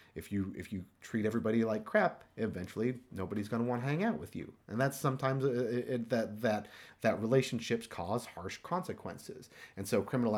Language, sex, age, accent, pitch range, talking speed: English, male, 30-49, American, 100-135 Hz, 190 wpm